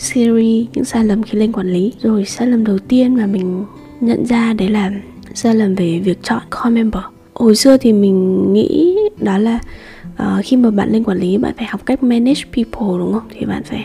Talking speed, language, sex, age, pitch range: 220 wpm, Vietnamese, female, 20-39, 190-245 Hz